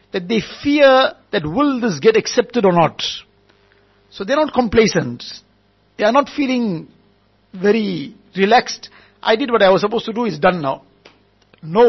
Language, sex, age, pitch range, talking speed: English, male, 60-79, 165-235 Hz, 165 wpm